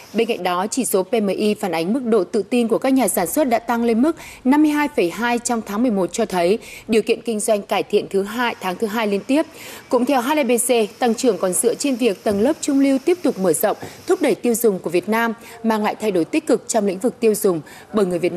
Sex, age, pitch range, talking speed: female, 20-39, 205-255 Hz, 255 wpm